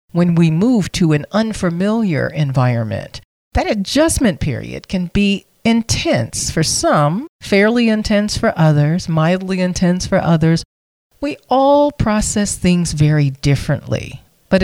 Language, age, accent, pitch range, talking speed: English, 40-59, American, 145-210 Hz, 125 wpm